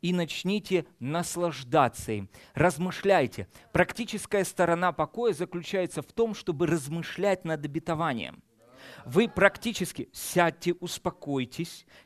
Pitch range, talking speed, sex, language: 130-210 Hz, 95 wpm, male, Russian